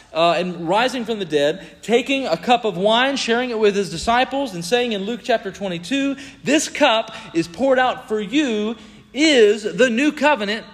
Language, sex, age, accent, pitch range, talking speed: English, male, 40-59, American, 205-260 Hz, 185 wpm